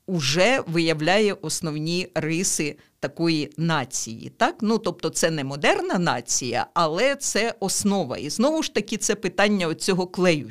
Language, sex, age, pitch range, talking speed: Ukrainian, female, 50-69, 175-235 Hz, 135 wpm